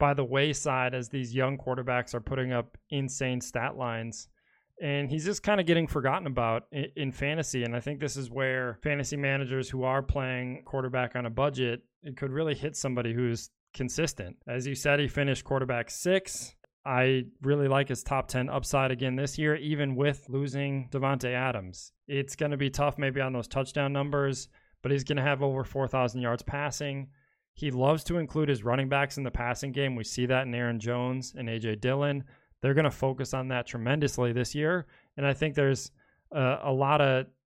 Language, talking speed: English, 195 wpm